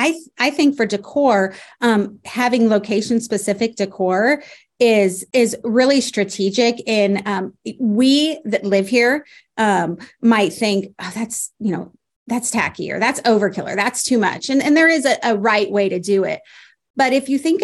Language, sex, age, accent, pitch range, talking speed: English, female, 30-49, American, 190-235 Hz, 170 wpm